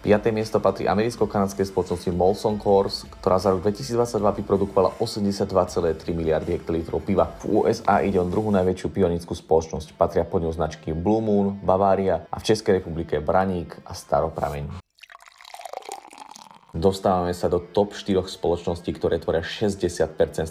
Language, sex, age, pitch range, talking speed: Slovak, male, 30-49, 85-100 Hz, 140 wpm